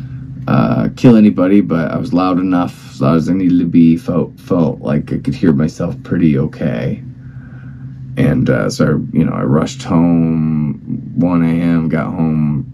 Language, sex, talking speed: English, male, 170 wpm